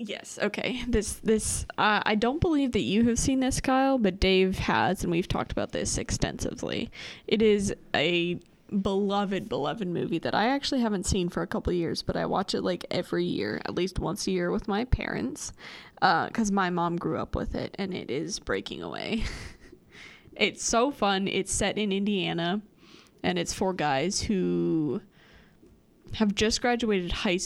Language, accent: English, American